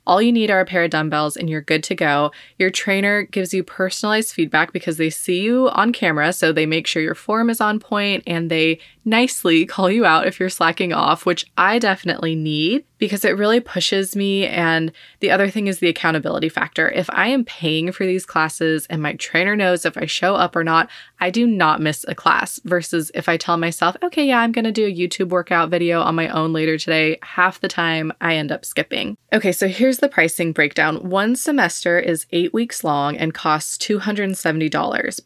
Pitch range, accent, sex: 160-210 Hz, American, female